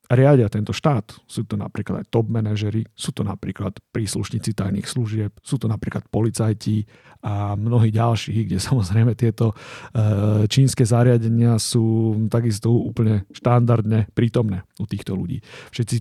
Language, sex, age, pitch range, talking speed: Slovak, male, 40-59, 110-125 Hz, 135 wpm